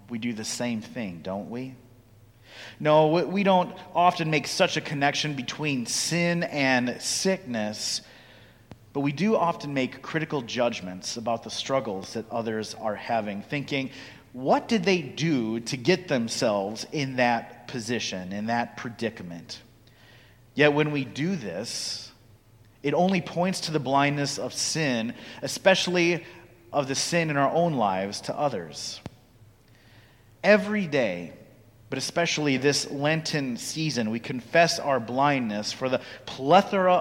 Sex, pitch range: male, 115-150 Hz